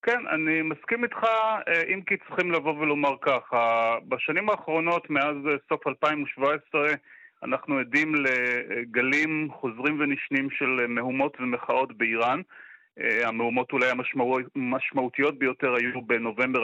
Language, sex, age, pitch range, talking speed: Hebrew, male, 30-49, 130-160 Hz, 110 wpm